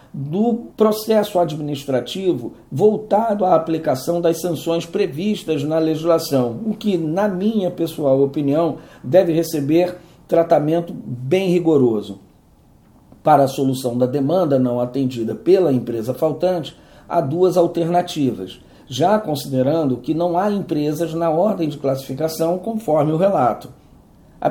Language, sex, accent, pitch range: Portuguese, male, Brazilian, 140-190 Hz